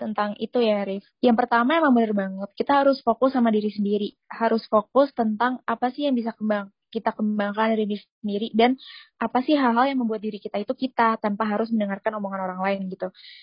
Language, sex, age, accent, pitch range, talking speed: Indonesian, female, 20-39, native, 205-240 Hz, 200 wpm